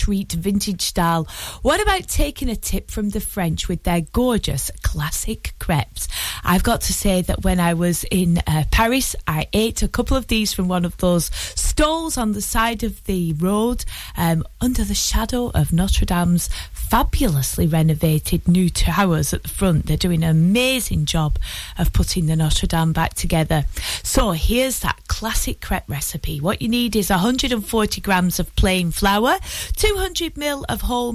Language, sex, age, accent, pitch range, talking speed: English, female, 30-49, British, 165-230 Hz, 170 wpm